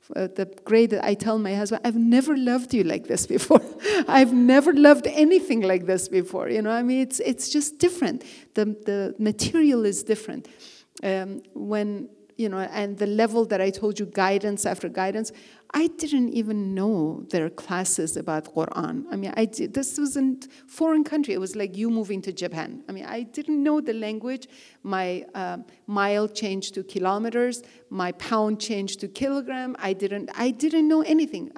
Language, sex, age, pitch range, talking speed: English, female, 40-59, 195-260 Hz, 180 wpm